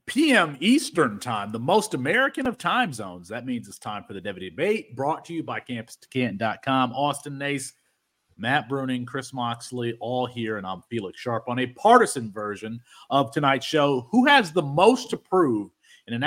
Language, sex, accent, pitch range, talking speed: English, male, American, 120-175 Hz, 180 wpm